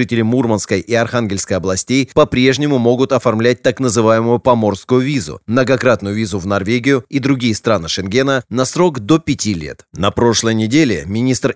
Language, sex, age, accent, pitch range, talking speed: Russian, male, 30-49, native, 110-130 Hz, 145 wpm